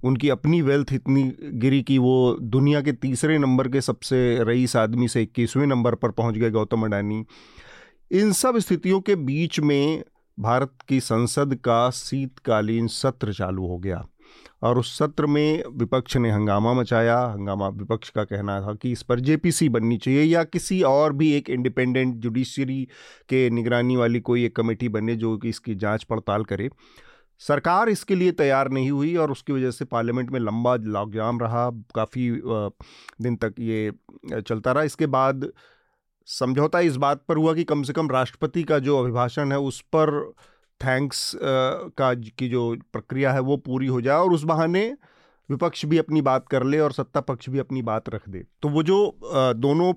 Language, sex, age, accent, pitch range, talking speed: Hindi, male, 40-59, native, 120-150 Hz, 175 wpm